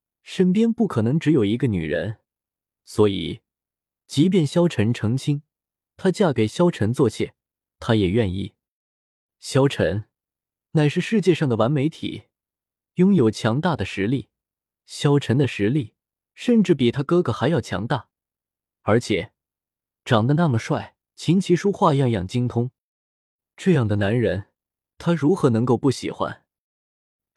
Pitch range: 110-170 Hz